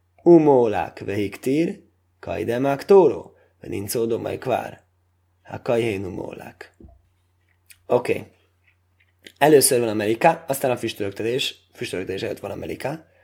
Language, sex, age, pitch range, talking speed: Hungarian, male, 20-39, 95-130 Hz, 100 wpm